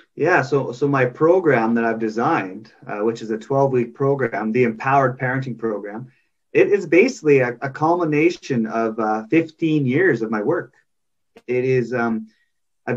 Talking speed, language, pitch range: 160 wpm, English, 120-145 Hz